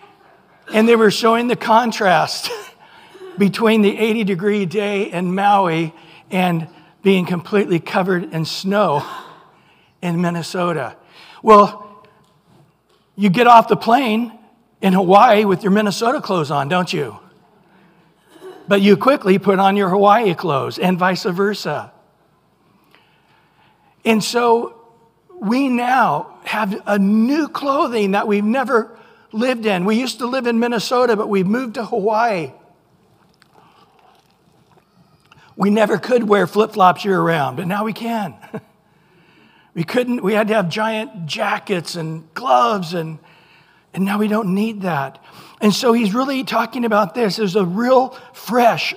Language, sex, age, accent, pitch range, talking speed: English, male, 60-79, American, 185-235 Hz, 130 wpm